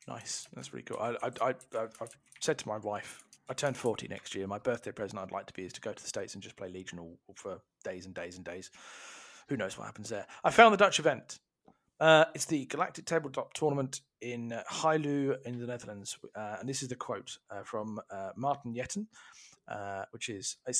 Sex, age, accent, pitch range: male, 40-59, British, 115-150 Hz